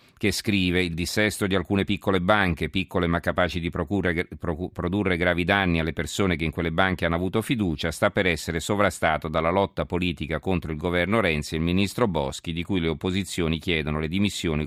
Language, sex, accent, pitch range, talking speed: Italian, male, native, 80-95 Hz, 190 wpm